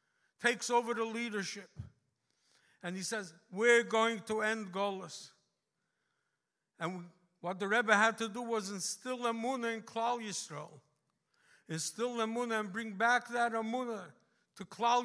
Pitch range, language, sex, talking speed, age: 185-225 Hz, English, male, 135 wpm, 60-79